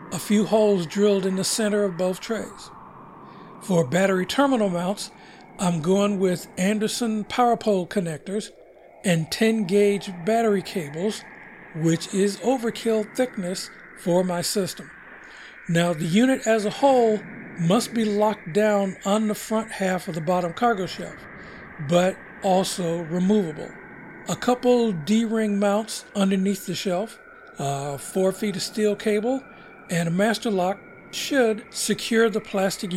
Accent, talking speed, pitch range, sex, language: American, 140 wpm, 180-220 Hz, male, English